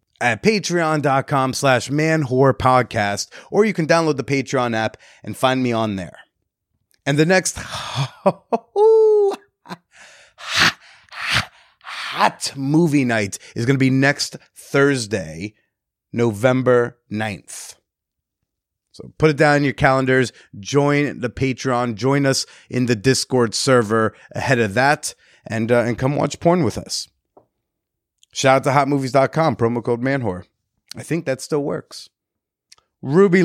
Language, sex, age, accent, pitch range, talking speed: English, male, 30-49, American, 115-145 Hz, 125 wpm